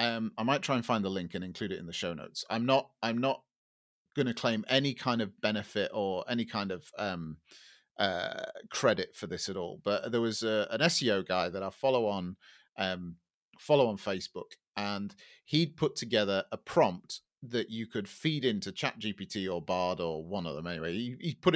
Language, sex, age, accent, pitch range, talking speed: English, male, 30-49, British, 100-130 Hz, 205 wpm